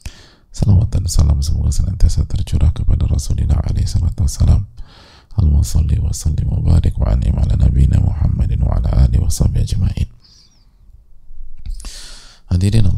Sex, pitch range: male, 75-95 Hz